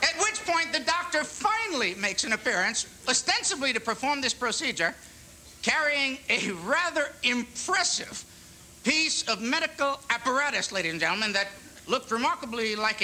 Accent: American